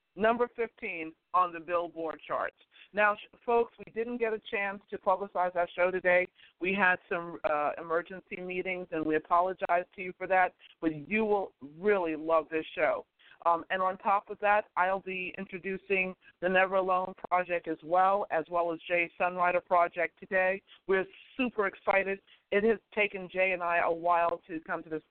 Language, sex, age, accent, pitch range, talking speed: English, female, 50-69, American, 165-195 Hz, 180 wpm